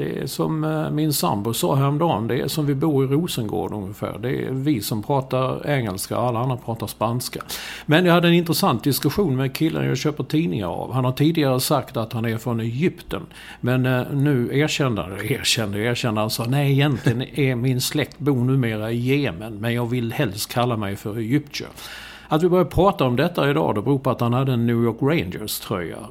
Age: 50-69